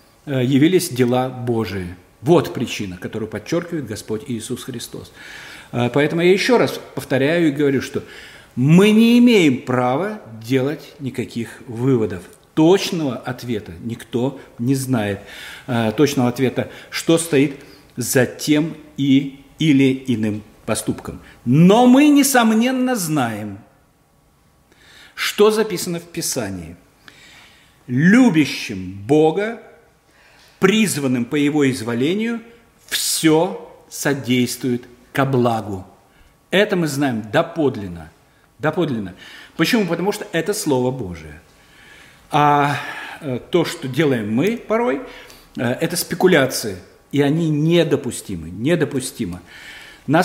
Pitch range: 120-165 Hz